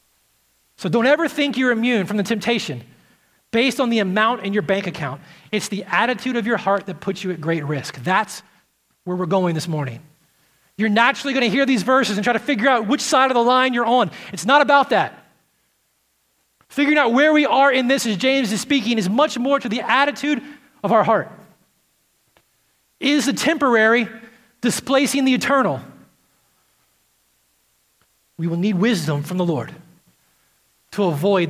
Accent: American